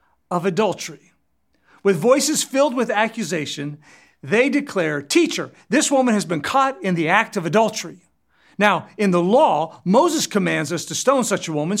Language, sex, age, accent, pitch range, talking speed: English, male, 50-69, American, 160-240 Hz, 165 wpm